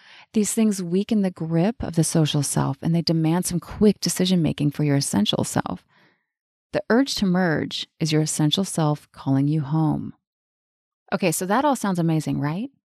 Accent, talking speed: American, 175 wpm